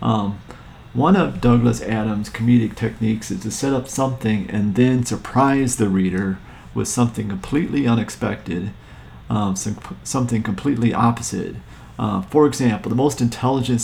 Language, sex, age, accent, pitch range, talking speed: English, male, 40-59, American, 100-125 Hz, 135 wpm